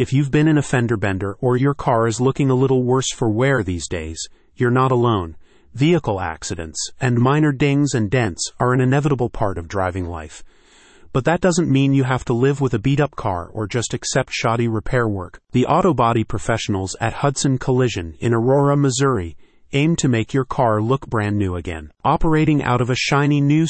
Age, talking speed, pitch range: 30-49, 205 wpm, 105-140 Hz